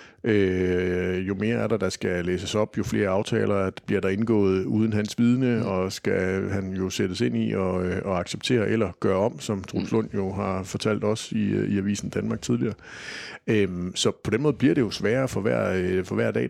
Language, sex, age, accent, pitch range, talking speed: Danish, male, 60-79, native, 95-110 Hz, 205 wpm